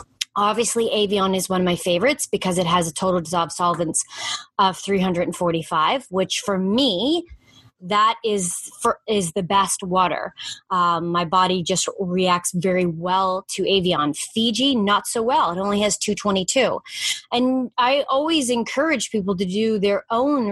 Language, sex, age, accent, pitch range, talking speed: English, female, 30-49, American, 185-235 Hz, 150 wpm